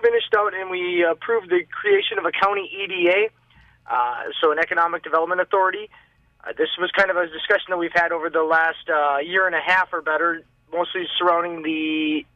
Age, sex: 20-39, male